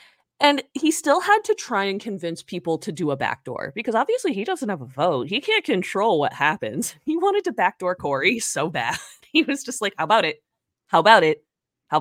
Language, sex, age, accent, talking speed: English, female, 30-49, American, 215 wpm